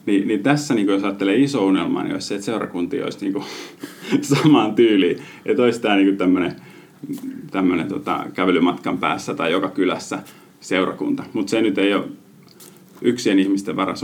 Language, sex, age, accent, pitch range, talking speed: Finnish, male, 30-49, native, 100-145 Hz, 160 wpm